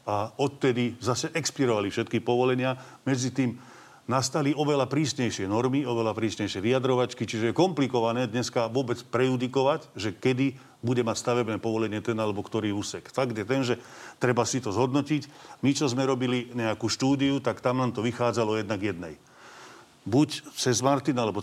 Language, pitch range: Slovak, 110-130 Hz